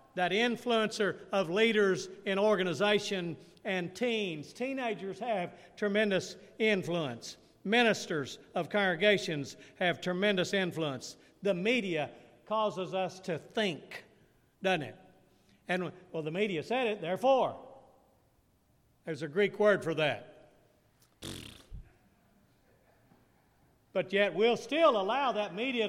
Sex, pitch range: male, 150-200 Hz